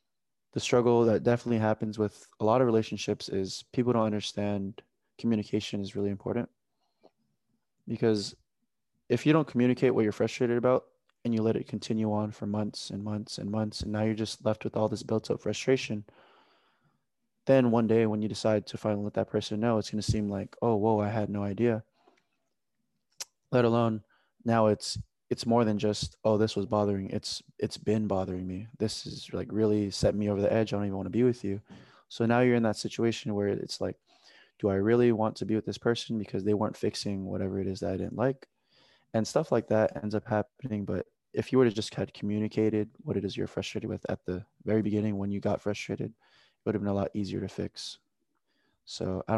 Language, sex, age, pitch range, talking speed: English, male, 20-39, 105-115 Hz, 215 wpm